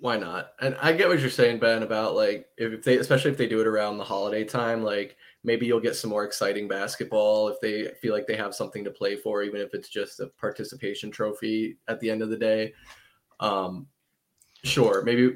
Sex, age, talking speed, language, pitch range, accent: male, 20-39, 220 wpm, English, 100-125 Hz, American